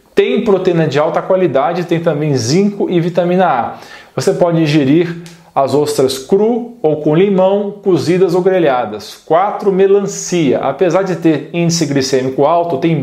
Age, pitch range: 40-59, 155-195 Hz